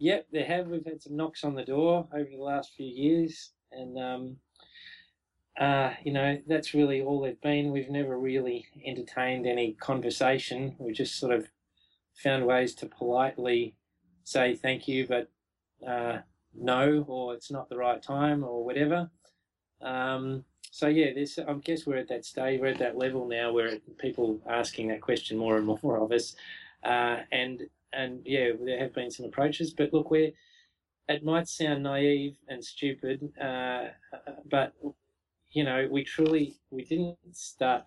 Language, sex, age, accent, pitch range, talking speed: English, male, 20-39, Australian, 125-145 Hz, 165 wpm